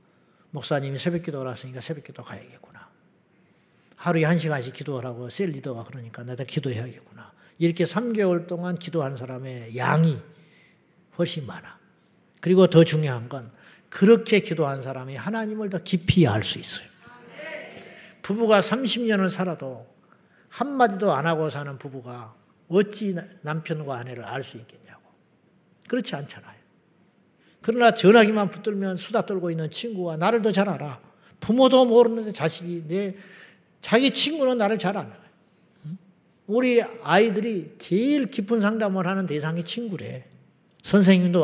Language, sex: Korean, male